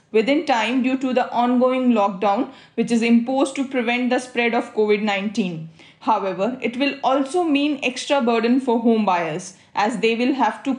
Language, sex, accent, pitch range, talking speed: English, female, Indian, 230-275 Hz, 170 wpm